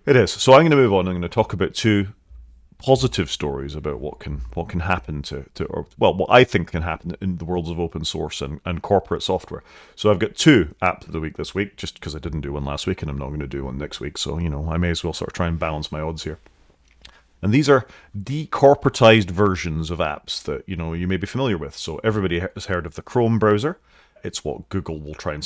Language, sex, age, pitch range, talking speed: English, male, 30-49, 80-100 Hz, 255 wpm